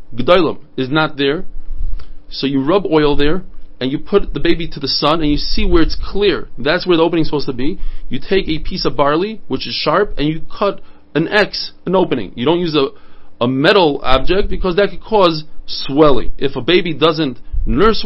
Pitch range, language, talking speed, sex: 140-180 Hz, English, 210 wpm, male